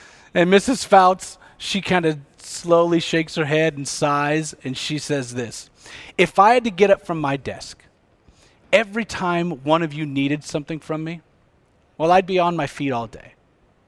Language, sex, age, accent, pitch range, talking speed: English, male, 40-59, American, 130-175 Hz, 180 wpm